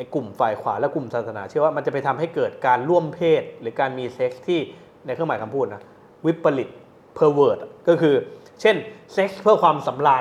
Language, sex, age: Thai, male, 20-39